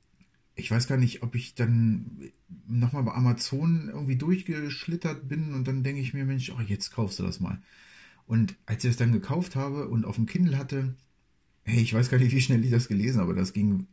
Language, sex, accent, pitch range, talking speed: German, male, German, 100-125 Hz, 215 wpm